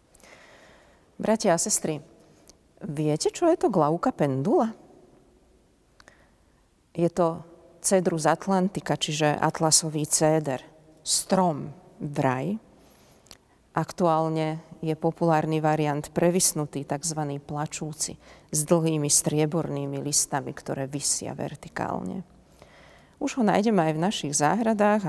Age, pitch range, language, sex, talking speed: 40-59, 155-190 Hz, Slovak, female, 95 wpm